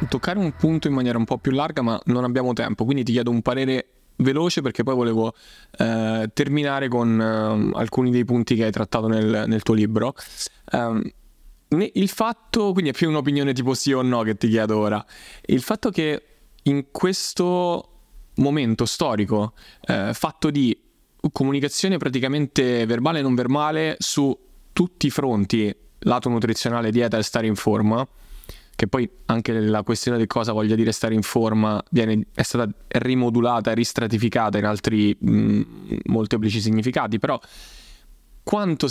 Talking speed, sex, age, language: 155 wpm, male, 20-39, Italian